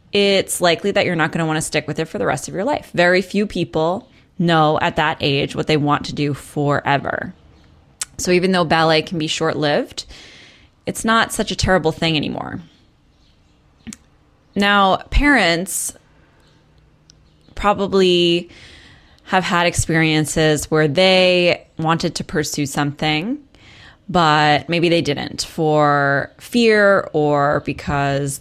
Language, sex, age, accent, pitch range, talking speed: English, female, 20-39, American, 150-190 Hz, 135 wpm